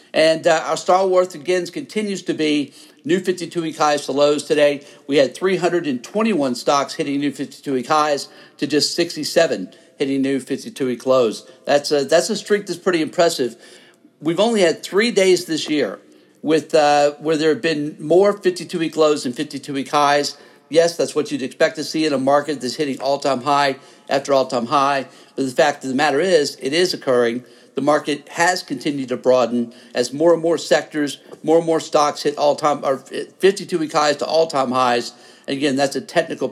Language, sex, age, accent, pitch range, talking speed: English, male, 50-69, American, 140-175 Hz, 185 wpm